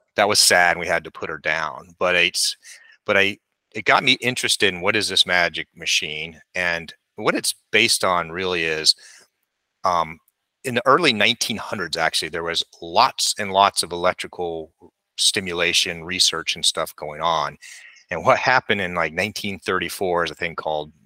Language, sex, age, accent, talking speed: English, male, 30-49, American, 170 wpm